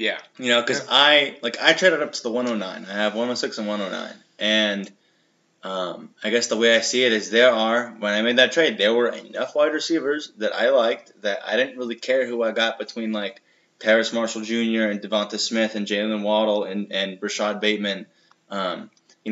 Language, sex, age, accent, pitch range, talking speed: English, male, 20-39, American, 105-130 Hz, 210 wpm